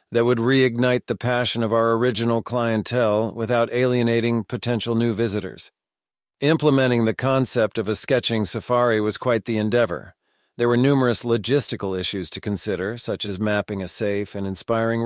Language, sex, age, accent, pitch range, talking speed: English, male, 40-59, American, 110-125 Hz, 155 wpm